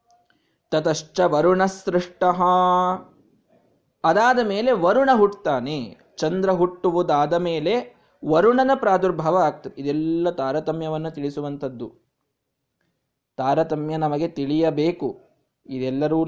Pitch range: 160-205 Hz